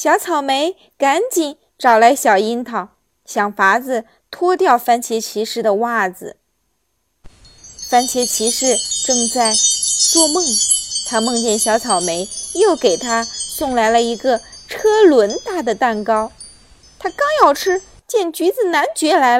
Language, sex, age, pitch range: Chinese, female, 20-39, 225-340 Hz